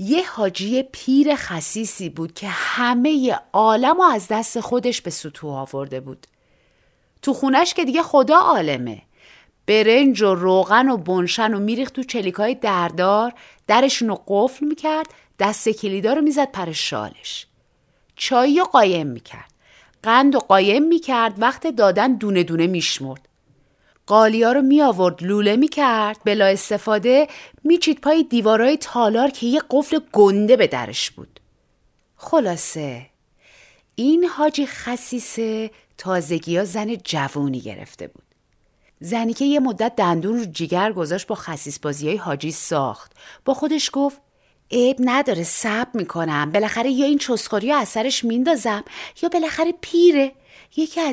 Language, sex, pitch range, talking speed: Persian, female, 185-275 Hz, 135 wpm